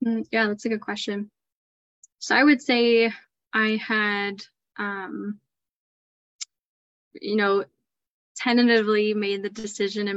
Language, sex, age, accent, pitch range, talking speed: English, female, 10-29, American, 195-225 Hz, 110 wpm